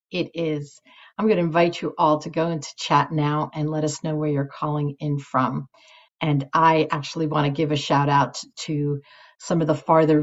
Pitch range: 145-160 Hz